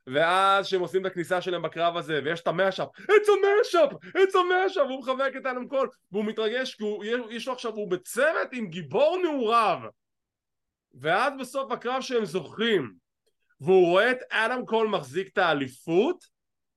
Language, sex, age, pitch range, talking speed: English, male, 20-39, 160-245 Hz, 155 wpm